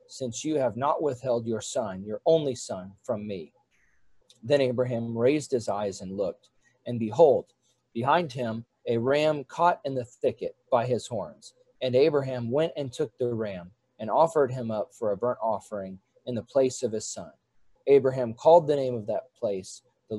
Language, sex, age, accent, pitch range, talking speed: English, male, 40-59, American, 120-145 Hz, 180 wpm